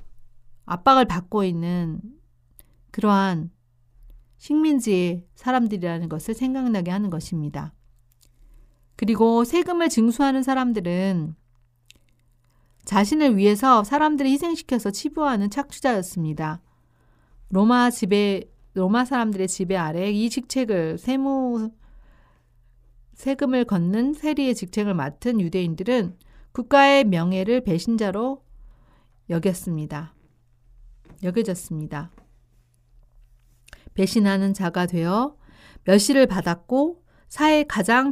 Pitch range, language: 150-245 Hz, Korean